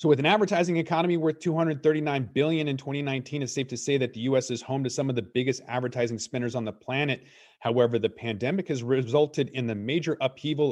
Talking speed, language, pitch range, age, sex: 215 wpm, English, 115-145 Hz, 30-49, male